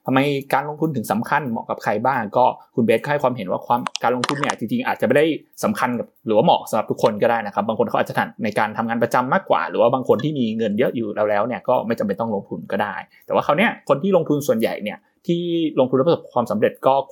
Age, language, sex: 20-39, Thai, male